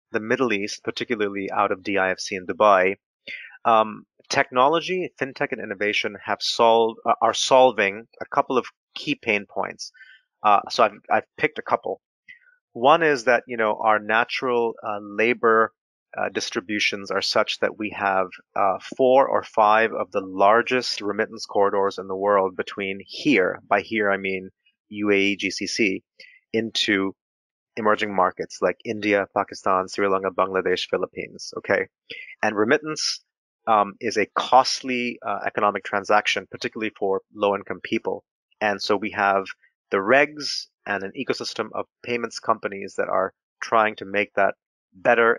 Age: 30-49